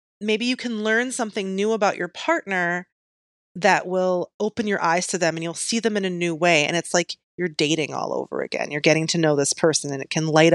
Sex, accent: female, American